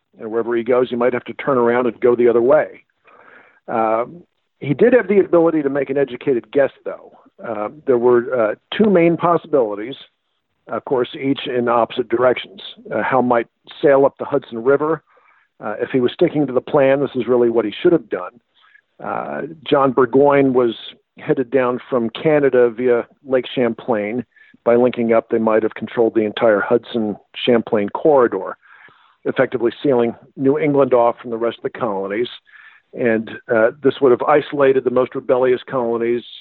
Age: 50-69